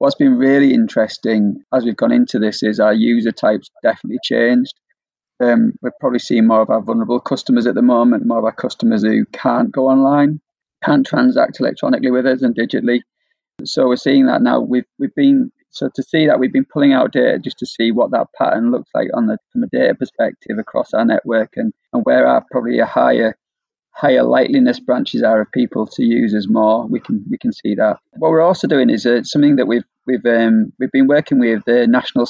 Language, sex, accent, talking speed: English, male, British, 215 wpm